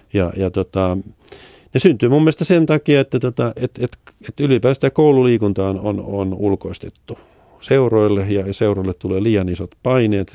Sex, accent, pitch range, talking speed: male, native, 95-110 Hz, 150 wpm